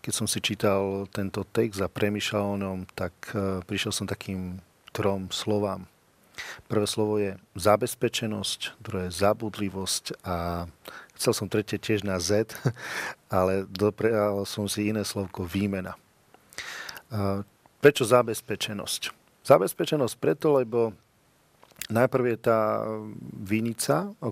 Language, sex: Slovak, male